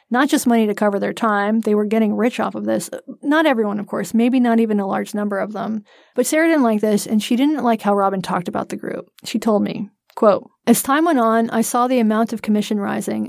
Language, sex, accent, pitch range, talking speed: English, female, American, 205-235 Hz, 255 wpm